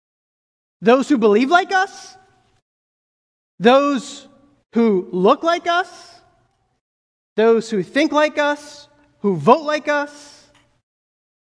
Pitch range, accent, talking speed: 235-305 Hz, American, 100 wpm